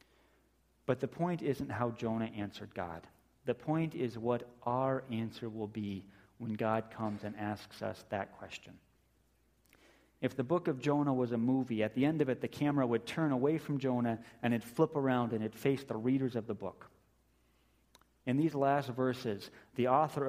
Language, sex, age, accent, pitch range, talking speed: English, male, 40-59, American, 110-140 Hz, 185 wpm